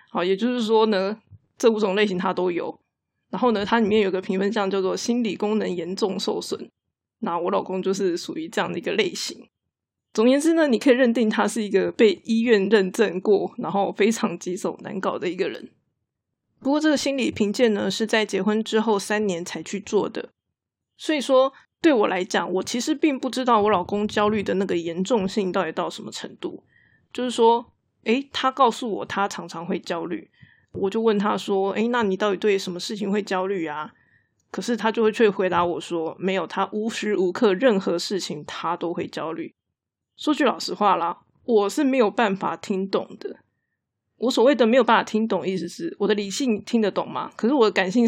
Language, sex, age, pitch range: Chinese, female, 20-39, 190-235 Hz